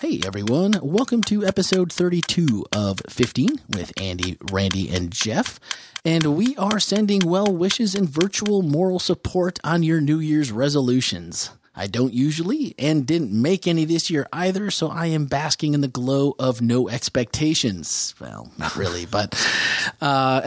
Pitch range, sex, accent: 115-165 Hz, male, American